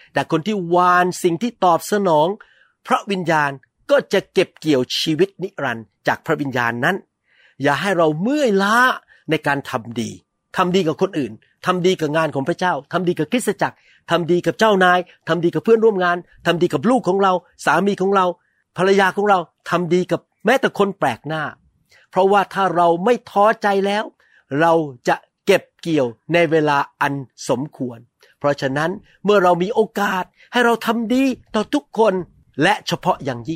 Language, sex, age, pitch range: Thai, male, 60-79, 140-190 Hz